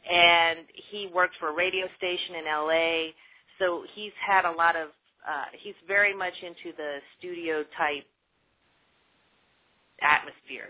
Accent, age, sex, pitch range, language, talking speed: American, 30-49, female, 155-190 Hz, English, 140 wpm